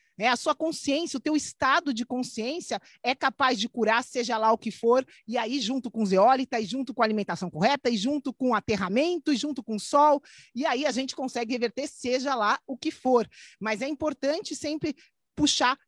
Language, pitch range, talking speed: Portuguese, 250-315 Hz, 205 wpm